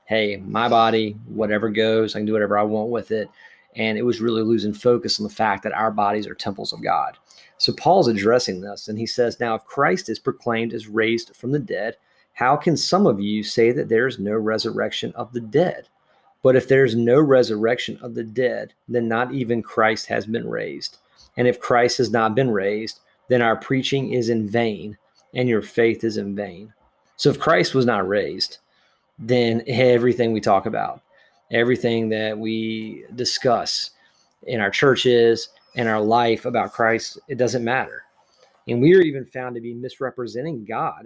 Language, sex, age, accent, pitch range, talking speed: English, male, 30-49, American, 110-125 Hz, 190 wpm